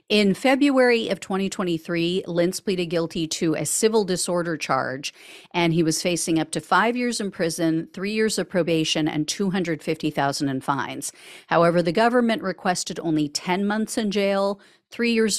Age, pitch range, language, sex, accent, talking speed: 40-59, 165-220 Hz, English, female, American, 160 wpm